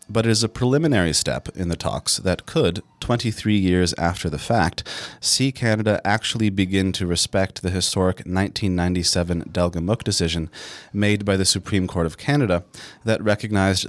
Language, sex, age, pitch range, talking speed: English, male, 30-49, 85-110 Hz, 155 wpm